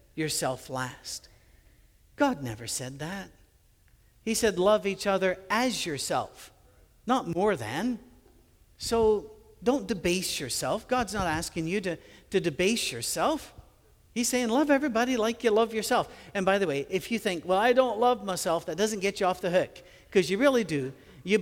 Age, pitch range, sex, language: 50-69, 140-210 Hz, male, English